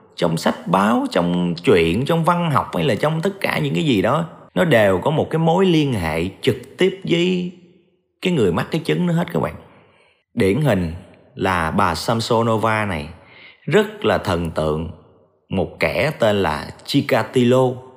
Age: 30-49